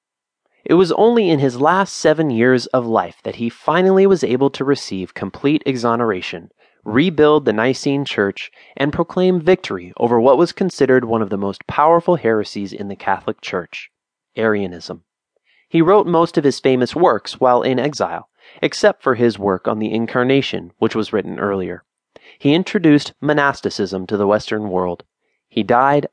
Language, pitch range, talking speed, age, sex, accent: English, 105-155 Hz, 165 wpm, 30-49, male, American